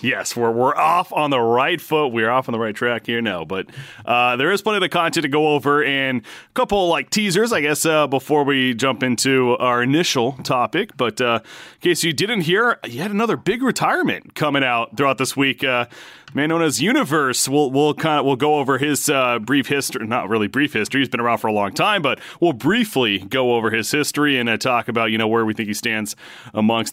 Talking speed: 230 wpm